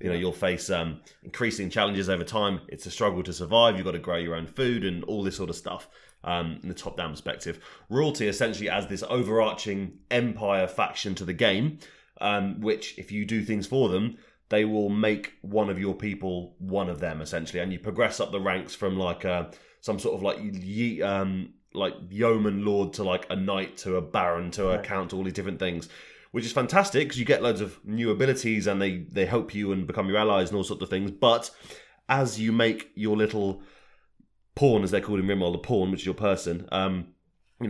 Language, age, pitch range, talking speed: English, 30-49, 95-110 Hz, 220 wpm